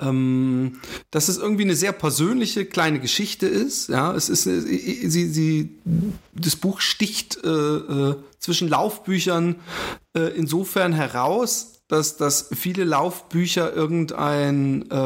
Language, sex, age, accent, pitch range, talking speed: German, male, 30-49, German, 140-175 Hz, 120 wpm